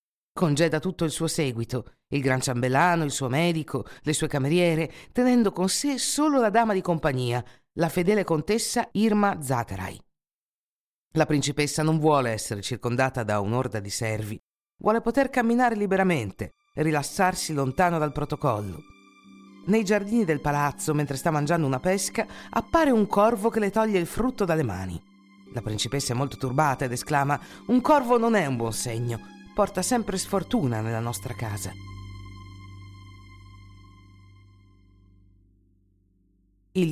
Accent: native